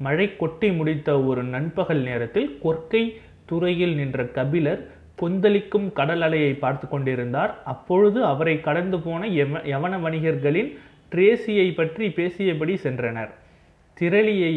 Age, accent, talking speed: 30-49, native, 105 wpm